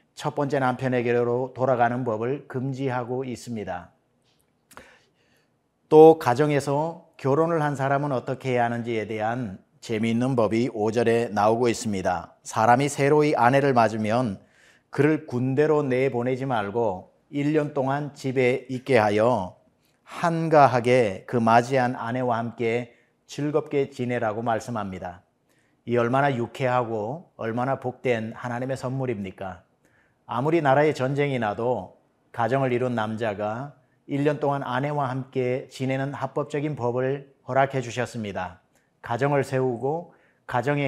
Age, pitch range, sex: 40-59, 120-140 Hz, male